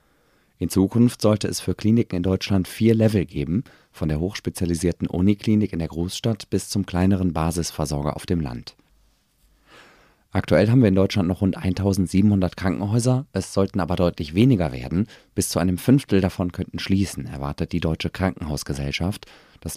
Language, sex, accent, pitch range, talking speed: German, male, German, 85-100 Hz, 160 wpm